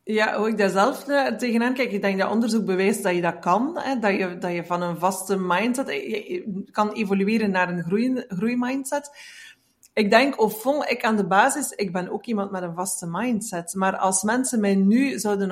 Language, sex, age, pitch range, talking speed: Dutch, female, 30-49, 195-240 Hz, 210 wpm